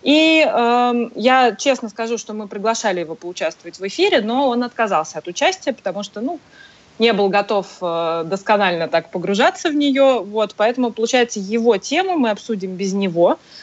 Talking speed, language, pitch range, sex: 165 wpm, Russian, 190-250 Hz, female